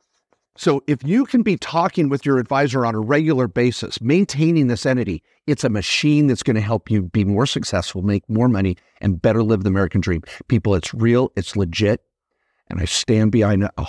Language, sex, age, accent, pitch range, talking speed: English, male, 50-69, American, 110-150 Hz, 195 wpm